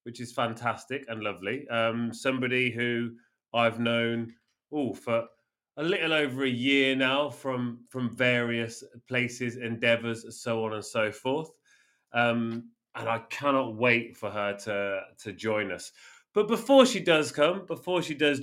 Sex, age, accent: male, 30-49, British